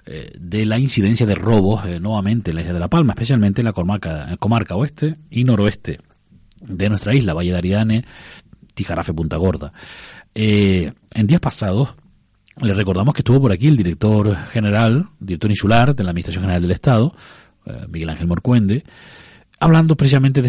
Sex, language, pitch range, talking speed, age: male, Spanish, 90-115 Hz, 175 wpm, 40-59